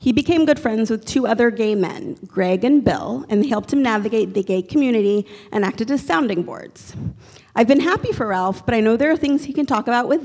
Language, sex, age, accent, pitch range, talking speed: English, female, 30-49, American, 215-275 Hz, 240 wpm